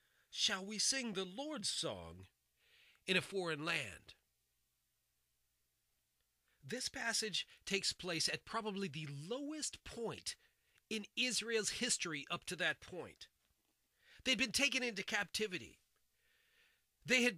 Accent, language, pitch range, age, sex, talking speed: American, English, 170-245 Hz, 40-59, male, 115 wpm